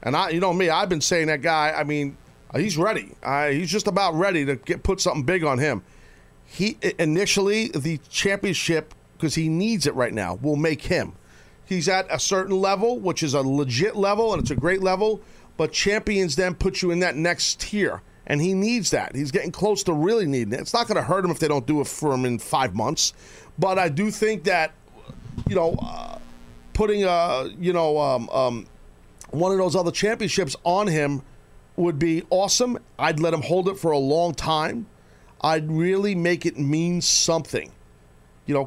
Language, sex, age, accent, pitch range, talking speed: English, male, 40-59, American, 145-185 Hz, 205 wpm